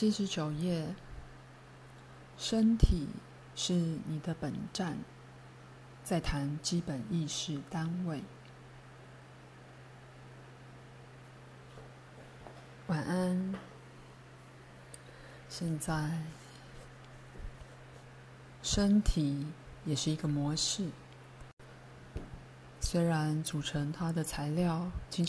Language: Chinese